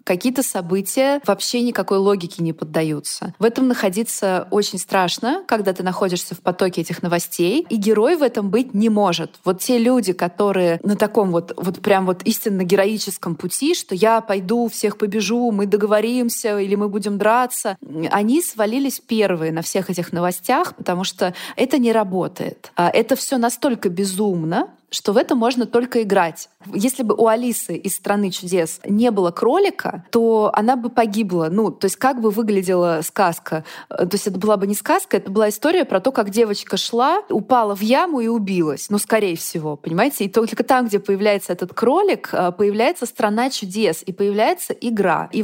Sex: female